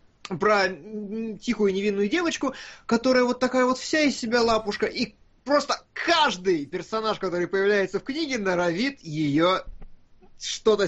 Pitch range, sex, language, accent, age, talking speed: 175-255 Hz, male, Russian, native, 20-39, 125 wpm